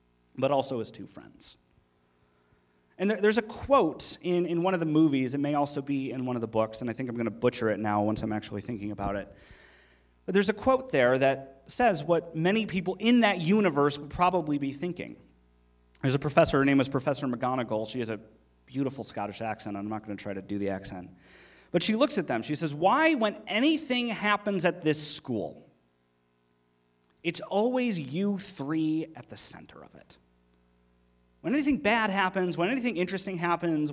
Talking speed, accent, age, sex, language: 190 wpm, American, 30-49, male, English